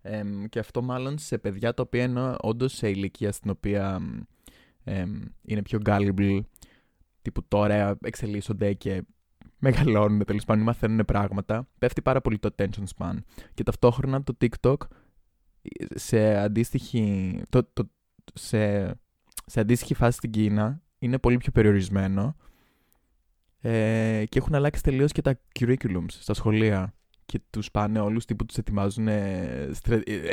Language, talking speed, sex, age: Greek, 135 wpm, male, 20-39